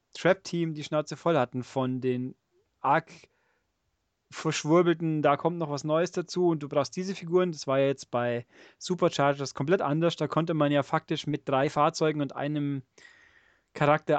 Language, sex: German, male